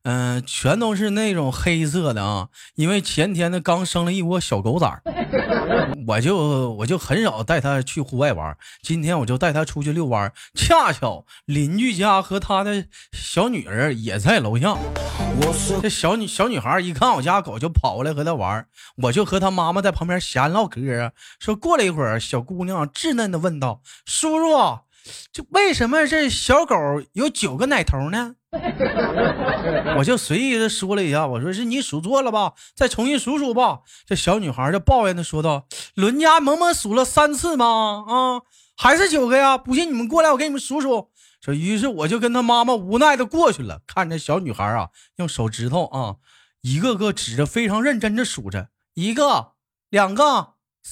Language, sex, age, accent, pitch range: Chinese, male, 20-39, native, 150-255 Hz